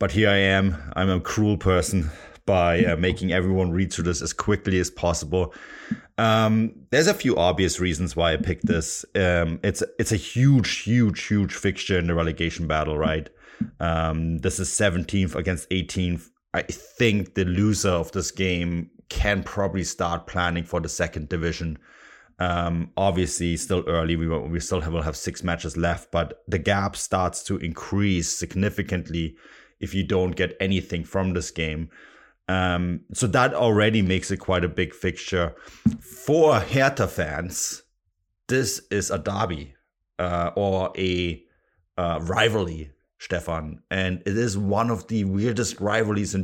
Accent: German